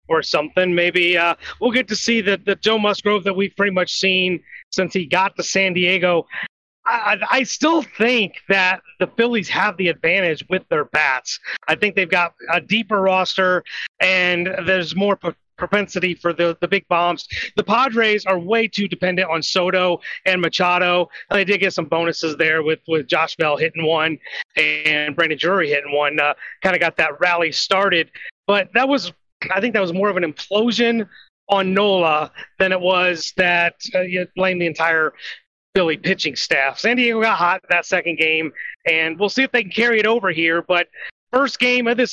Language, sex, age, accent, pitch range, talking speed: English, male, 30-49, American, 170-205 Hz, 190 wpm